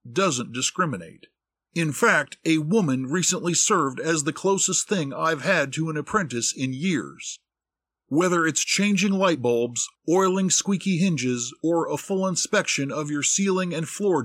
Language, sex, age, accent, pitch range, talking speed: English, male, 50-69, American, 140-190 Hz, 150 wpm